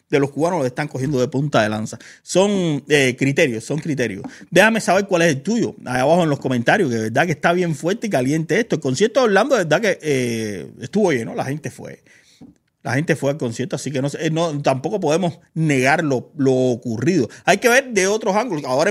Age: 30-49